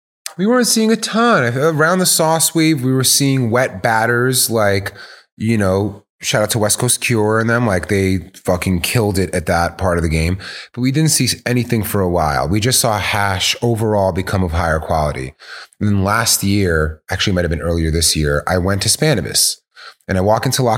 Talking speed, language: 210 wpm, English